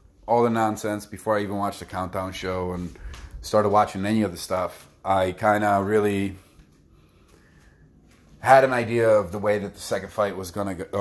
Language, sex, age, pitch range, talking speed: English, male, 30-49, 95-115 Hz, 175 wpm